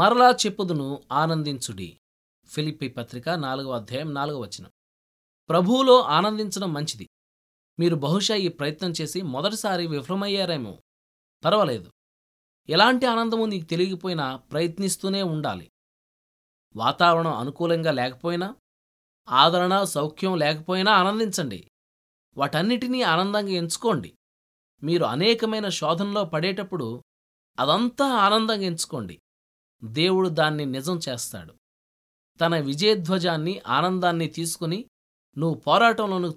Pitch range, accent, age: 140-200 Hz, native, 20-39